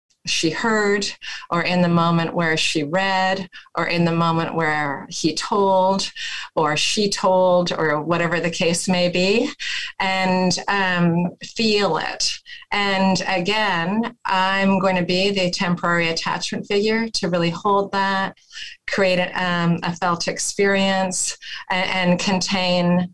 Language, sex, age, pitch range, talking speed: English, female, 30-49, 170-195 Hz, 130 wpm